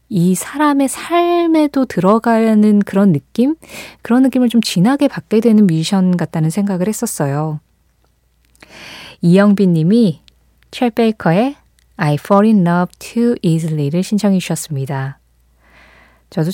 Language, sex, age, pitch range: Korean, female, 20-39, 160-225 Hz